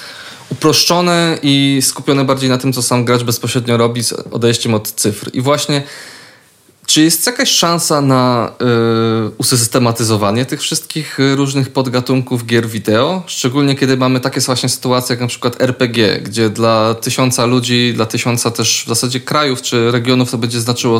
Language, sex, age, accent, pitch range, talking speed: Polish, male, 20-39, native, 115-135 Hz, 155 wpm